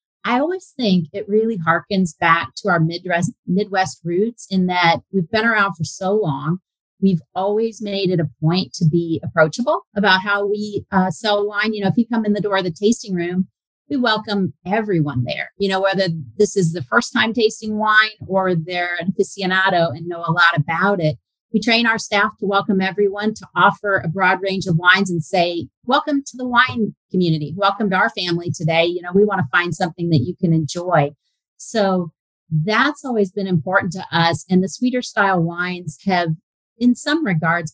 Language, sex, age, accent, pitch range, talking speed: English, female, 40-59, American, 170-205 Hz, 195 wpm